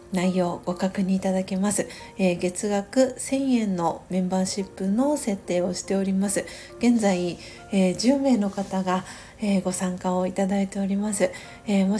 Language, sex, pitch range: Japanese, female, 185-220 Hz